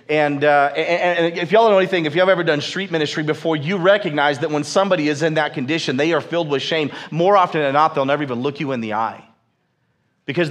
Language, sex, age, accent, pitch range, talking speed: English, male, 40-59, American, 155-205 Hz, 250 wpm